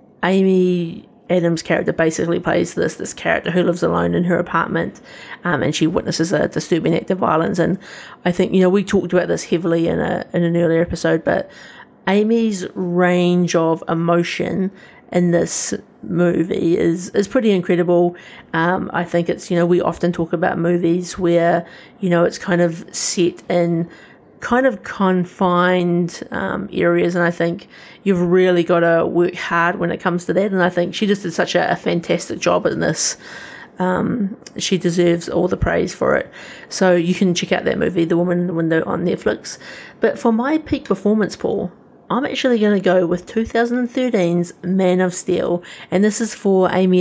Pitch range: 170-195 Hz